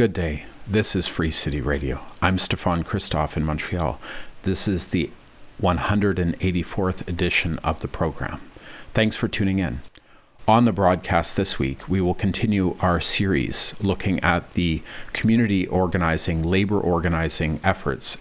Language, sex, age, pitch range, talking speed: English, male, 40-59, 80-95 Hz, 140 wpm